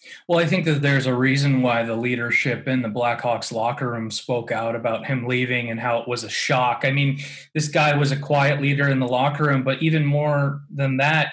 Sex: male